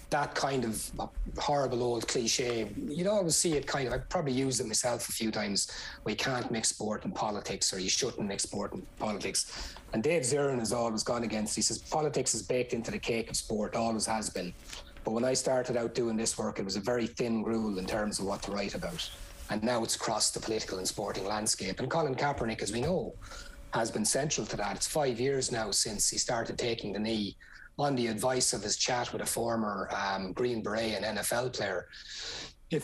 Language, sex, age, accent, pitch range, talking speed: English, male, 30-49, Irish, 105-125 Hz, 220 wpm